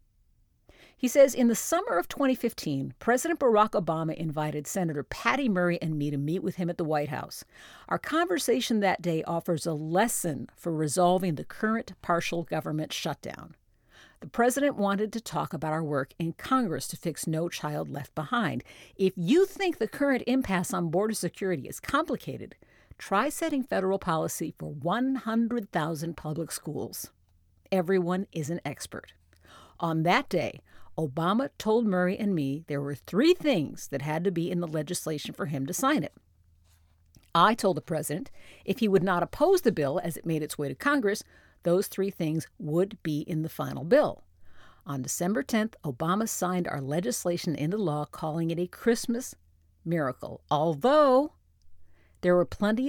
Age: 50-69